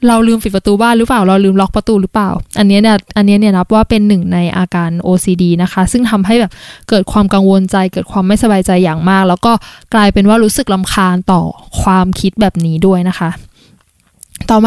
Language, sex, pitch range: Thai, female, 195-240 Hz